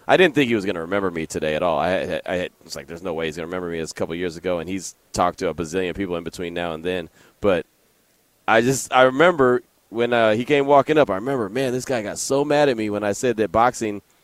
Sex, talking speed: male, 280 wpm